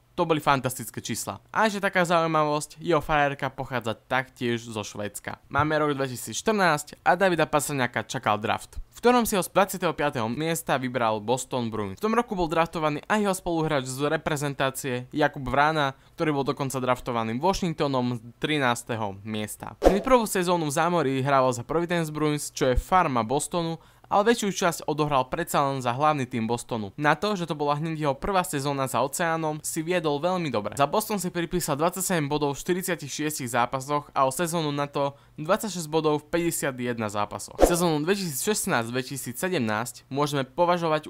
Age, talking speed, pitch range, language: 20-39, 165 wpm, 130-170 Hz, Czech